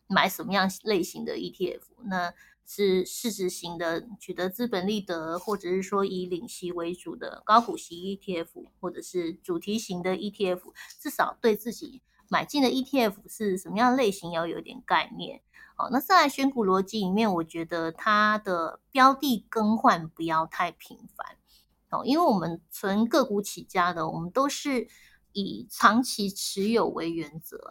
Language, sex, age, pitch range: Chinese, female, 20-39, 180-235 Hz